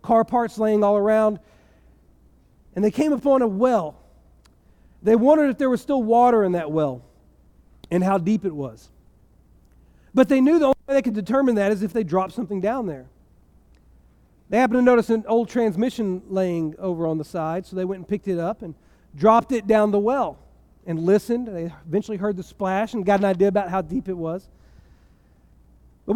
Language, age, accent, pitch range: English, 40-59, American, 165-250 Hz